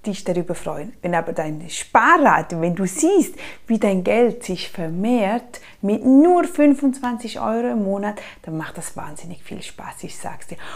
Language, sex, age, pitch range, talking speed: German, female, 30-49, 185-245 Hz, 165 wpm